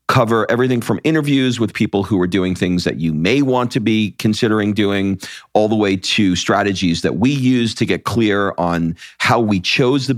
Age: 50-69